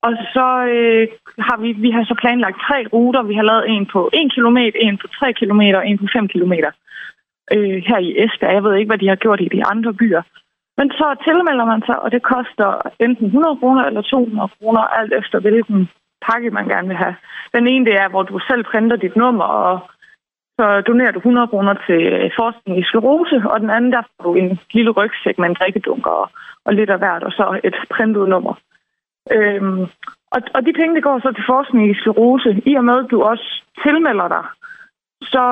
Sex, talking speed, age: female, 210 wpm, 20-39